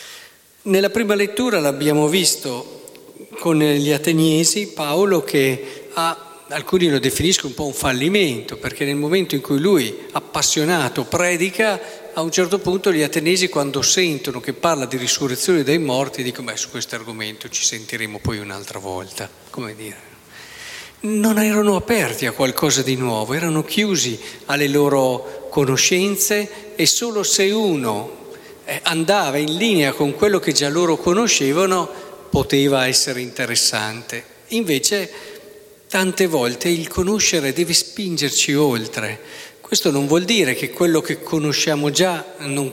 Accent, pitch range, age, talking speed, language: native, 140-195 Hz, 50-69, 140 wpm, Italian